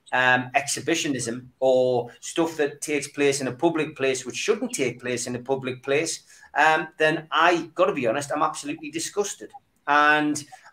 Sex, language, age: male, English, 30-49